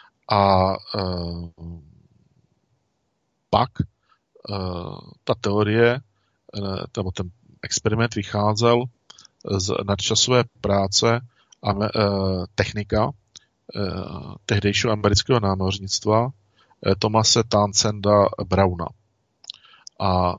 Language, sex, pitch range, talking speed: Czech, male, 100-110 Hz, 80 wpm